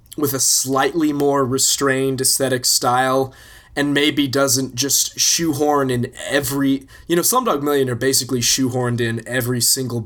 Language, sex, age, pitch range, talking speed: English, male, 20-39, 120-135 Hz, 135 wpm